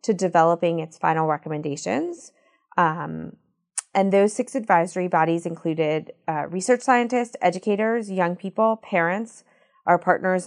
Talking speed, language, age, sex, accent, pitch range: 120 wpm, English, 30-49, female, American, 165-205 Hz